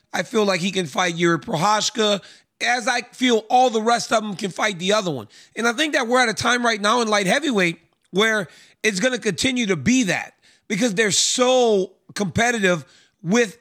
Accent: American